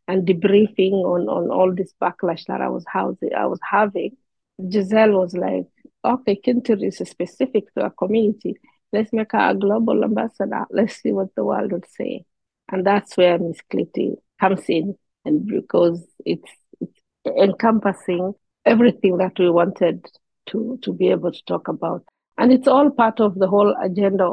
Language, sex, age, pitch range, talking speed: English, female, 50-69, 180-215 Hz, 170 wpm